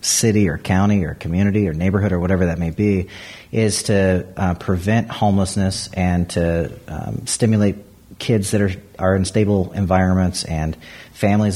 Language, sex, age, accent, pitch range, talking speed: English, male, 40-59, American, 95-110 Hz, 155 wpm